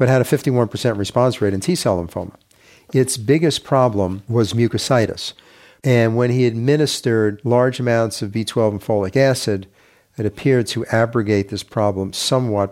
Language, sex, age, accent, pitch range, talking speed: English, male, 50-69, American, 100-120 Hz, 150 wpm